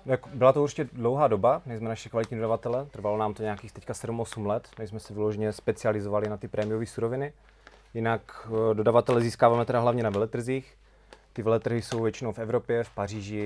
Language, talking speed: Czech, 185 wpm